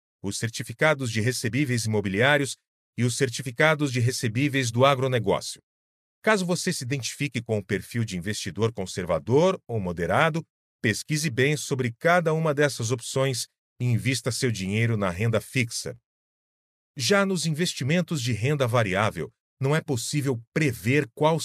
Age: 40-59